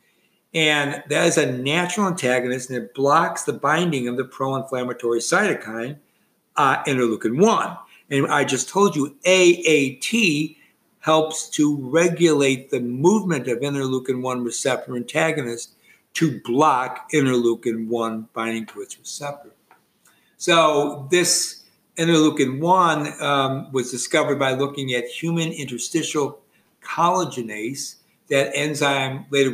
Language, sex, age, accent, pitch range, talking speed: English, male, 60-79, American, 125-160 Hz, 110 wpm